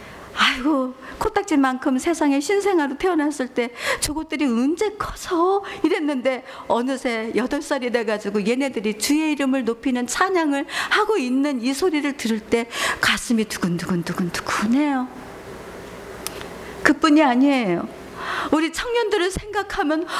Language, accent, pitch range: Korean, native, 235-325 Hz